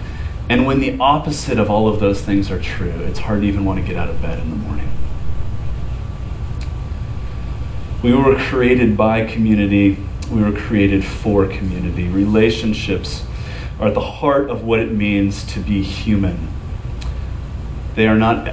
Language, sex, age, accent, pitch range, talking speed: English, male, 30-49, American, 100-150 Hz, 160 wpm